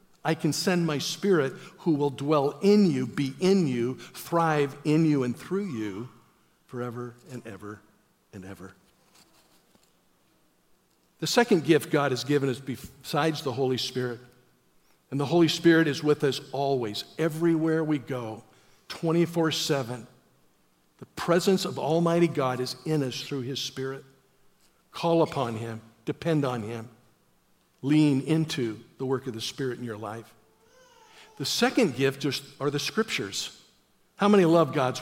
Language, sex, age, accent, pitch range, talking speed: English, male, 50-69, American, 130-170 Hz, 145 wpm